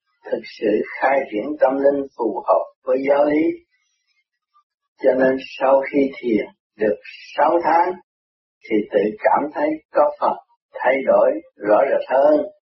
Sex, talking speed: male, 140 wpm